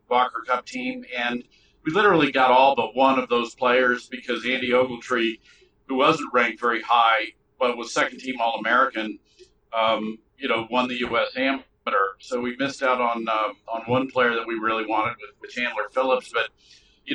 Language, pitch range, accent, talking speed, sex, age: English, 115-135 Hz, American, 180 wpm, male, 50-69